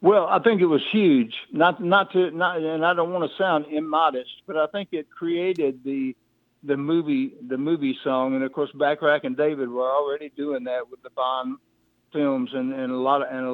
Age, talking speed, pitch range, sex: 60-79, 215 wpm, 135-170 Hz, male